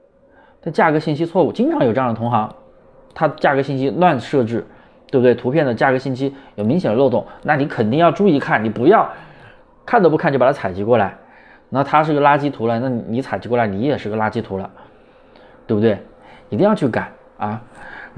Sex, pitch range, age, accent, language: male, 110-150 Hz, 20-39, native, Chinese